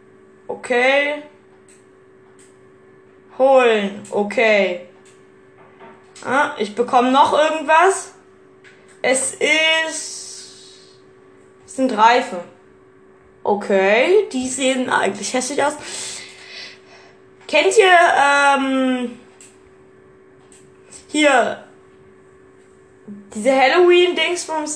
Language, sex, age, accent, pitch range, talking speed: German, female, 10-29, German, 220-280 Hz, 60 wpm